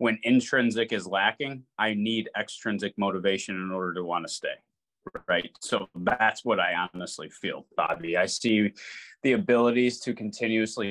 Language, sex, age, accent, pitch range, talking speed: English, male, 20-39, American, 105-125 Hz, 155 wpm